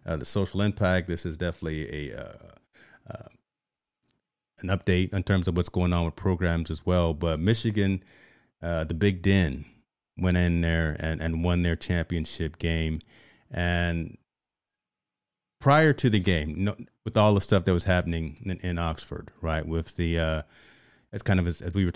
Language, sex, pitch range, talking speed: English, male, 85-95 Hz, 180 wpm